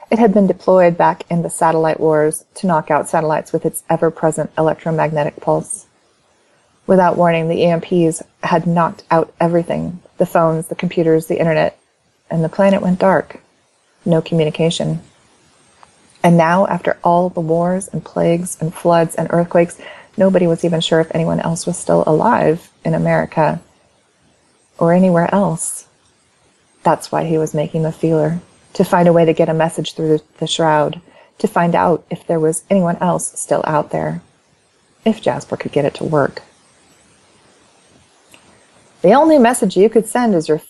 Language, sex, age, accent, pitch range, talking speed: English, female, 30-49, American, 160-180 Hz, 160 wpm